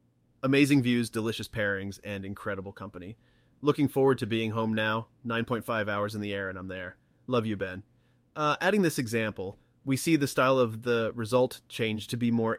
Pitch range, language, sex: 105-125 Hz, English, male